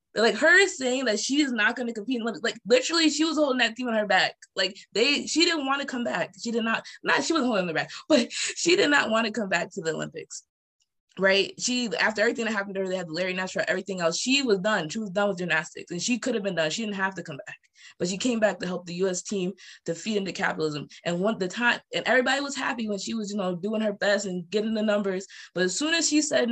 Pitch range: 180-245 Hz